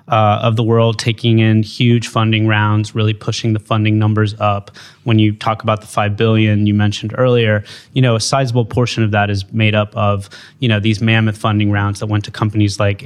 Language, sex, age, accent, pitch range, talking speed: English, male, 20-39, American, 105-120 Hz, 215 wpm